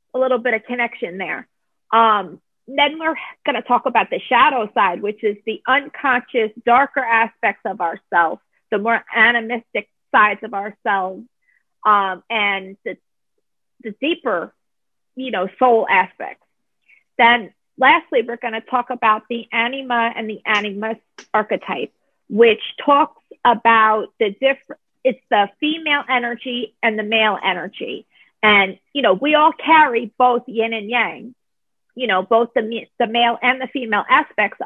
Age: 40-59